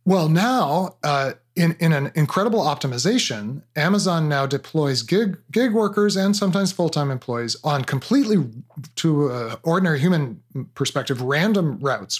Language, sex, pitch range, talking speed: English, male, 135-185 Hz, 135 wpm